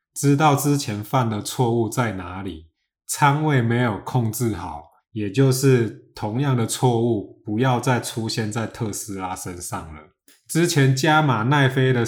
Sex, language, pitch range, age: male, Chinese, 105-135 Hz, 20-39